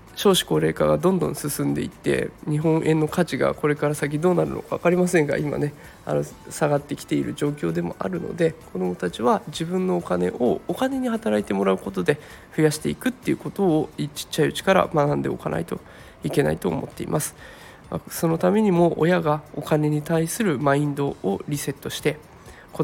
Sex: male